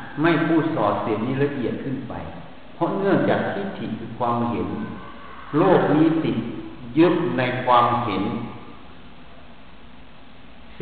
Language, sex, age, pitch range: Thai, male, 60-79, 110-145 Hz